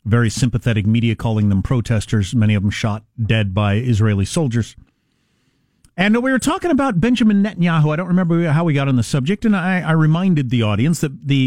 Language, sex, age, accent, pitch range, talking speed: English, male, 50-69, American, 110-150 Hz, 200 wpm